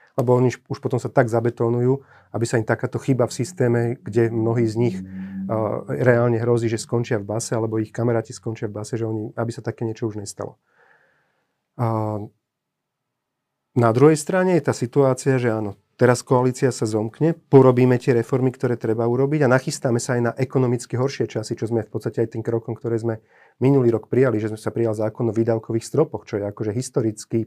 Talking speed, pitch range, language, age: 195 wpm, 115-130 Hz, Slovak, 30-49